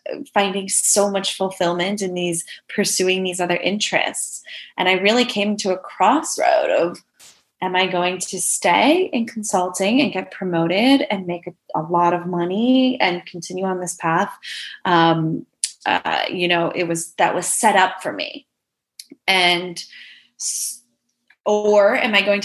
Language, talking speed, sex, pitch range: English, 150 wpm, female, 180-225 Hz